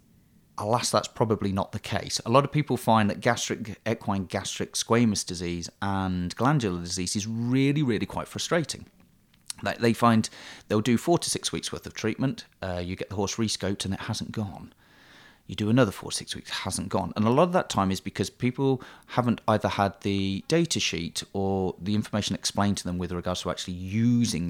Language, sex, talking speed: English, male, 205 wpm